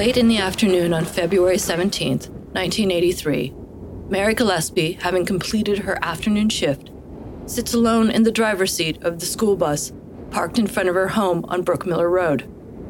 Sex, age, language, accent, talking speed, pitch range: female, 30-49, English, American, 160 wpm, 175-210 Hz